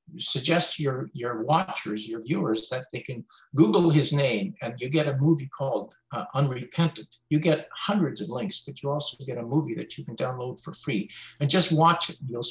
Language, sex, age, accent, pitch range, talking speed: English, male, 60-79, American, 115-160 Hz, 210 wpm